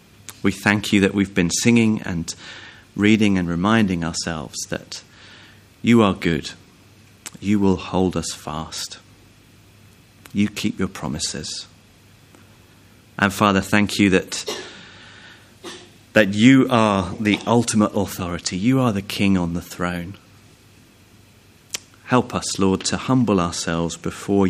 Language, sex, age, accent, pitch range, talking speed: English, male, 30-49, British, 90-105 Hz, 120 wpm